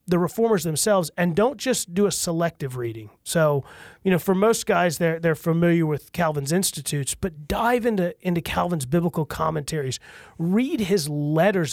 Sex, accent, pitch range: male, American, 145-175 Hz